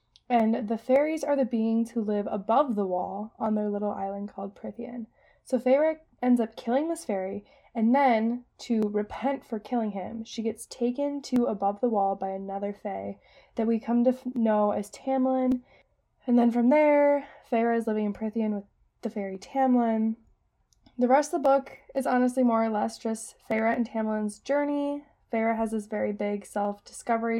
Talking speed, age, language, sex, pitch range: 180 wpm, 20-39, English, female, 215-265 Hz